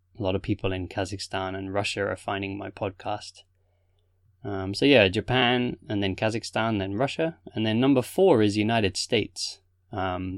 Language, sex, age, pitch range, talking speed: English, male, 20-39, 95-110 Hz, 170 wpm